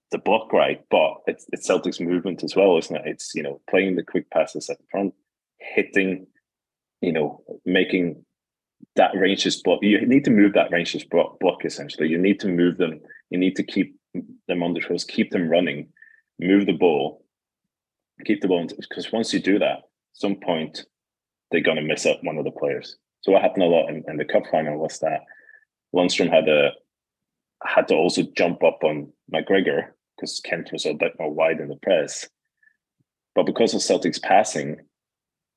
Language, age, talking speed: English, 20-39, 190 wpm